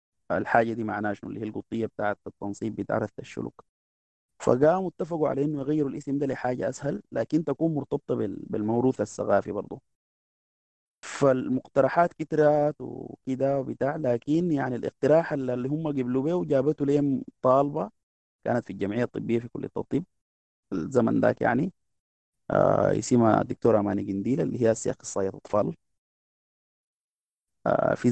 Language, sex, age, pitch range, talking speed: Arabic, male, 30-49, 110-145 Hz, 135 wpm